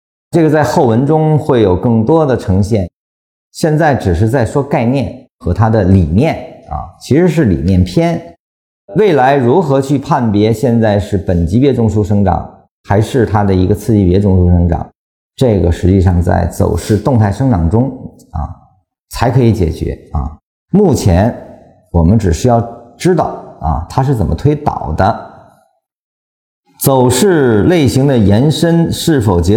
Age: 50-69